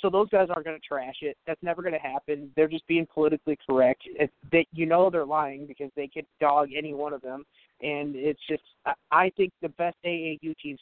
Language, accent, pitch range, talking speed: English, American, 145-175 Hz, 235 wpm